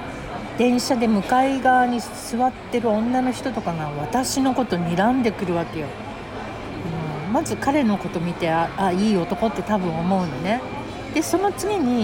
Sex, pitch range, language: female, 185-255 Hz, Japanese